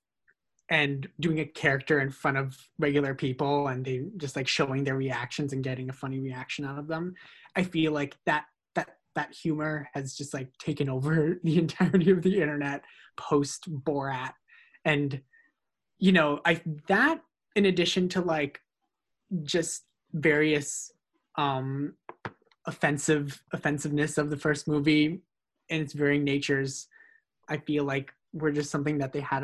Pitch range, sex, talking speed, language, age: 140-160 Hz, male, 150 wpm, English, 20-39